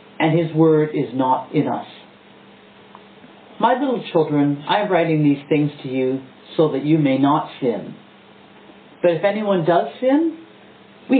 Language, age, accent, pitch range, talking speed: English, 50-69, American, 150-210 Hz, 155 wpm